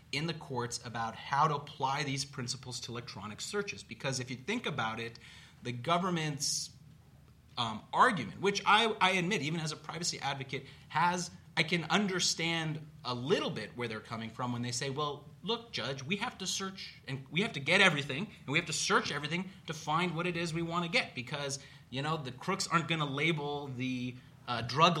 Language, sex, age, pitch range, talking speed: English, male, 30-49, 130-170 Hz, 205 wpm